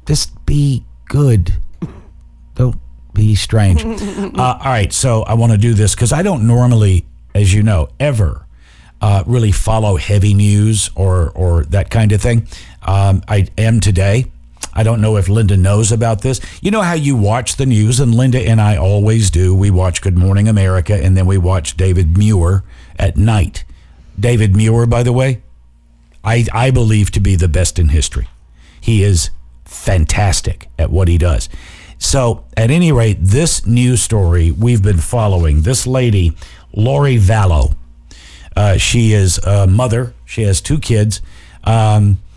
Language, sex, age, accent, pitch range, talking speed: English, male, 50-69, American, 85-115 Hz, 165 wpm